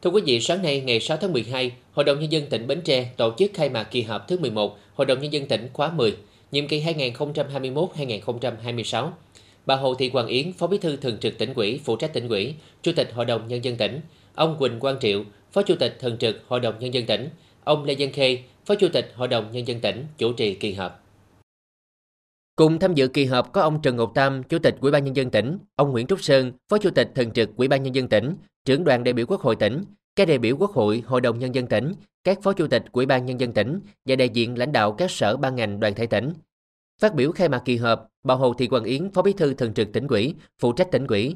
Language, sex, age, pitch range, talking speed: Vietnamese, male, 20-39, 120-155 Hz, 260 wpm